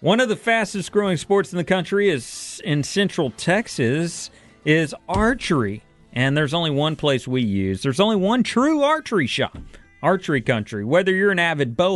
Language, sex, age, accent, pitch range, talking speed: English, male, 40-59, American, 135-180 Hz, 175 wpm